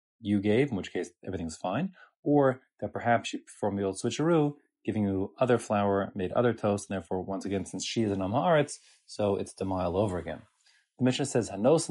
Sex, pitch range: male, 110-145 Hz